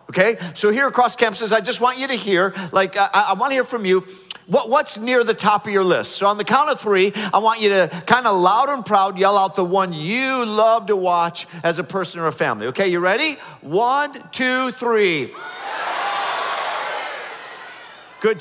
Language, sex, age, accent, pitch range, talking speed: English, male, 50-69, American, 140-205 Hz, 200 wpm